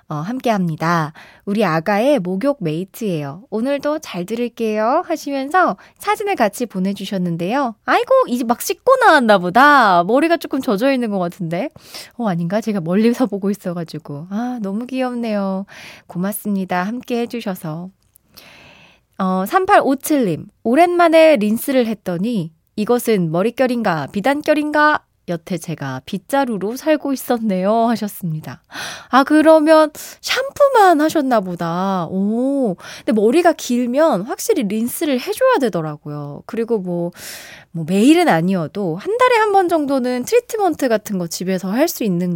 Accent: native